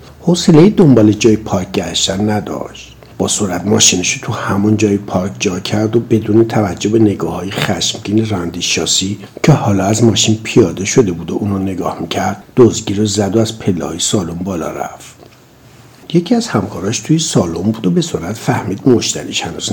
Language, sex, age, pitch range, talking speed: Persian, male, 60-79, 95-140 Hz, 165 wpm